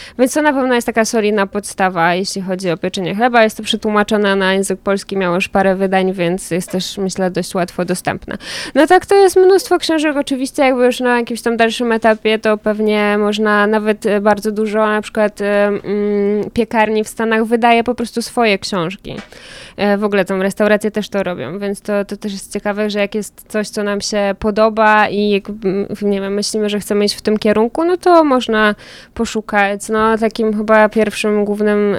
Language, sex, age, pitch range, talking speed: Polish, female, 20-39, 195-215 Hz, 190 wpm